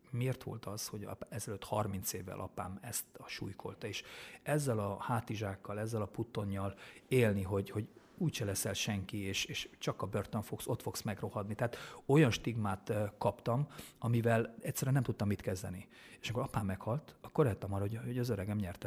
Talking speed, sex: 170 wpm, male